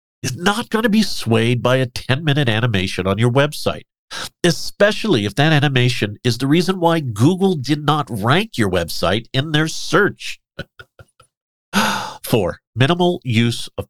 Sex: male